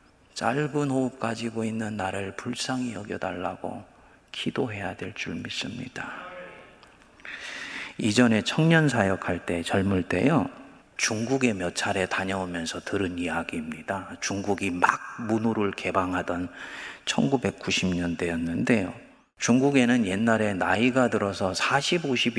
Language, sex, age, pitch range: Korean, male, 30-49, 95-120 Hz